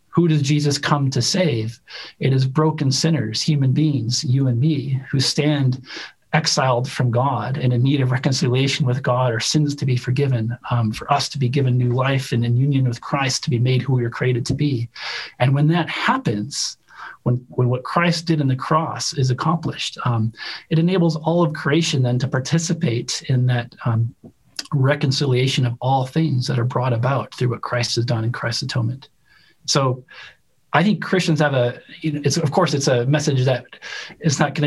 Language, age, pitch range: English, 40-59, 125-155 Hz